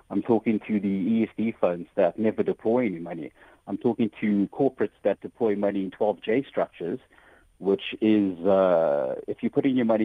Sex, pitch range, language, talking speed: male, 95-115 Hz, English, 175 wpm